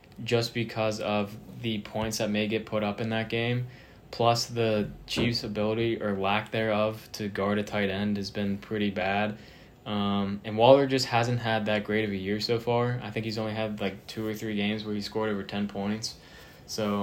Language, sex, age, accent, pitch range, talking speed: English, male, 20-39, American, 105-115 Hz, 210 wpm